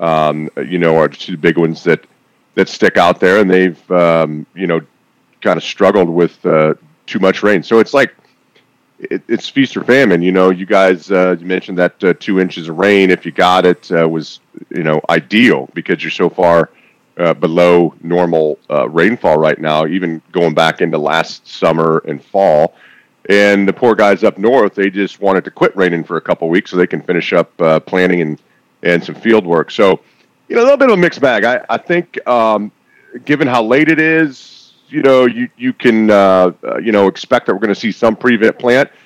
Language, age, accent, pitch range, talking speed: English, 40-59, American, 90-125 Hz, 215 wpm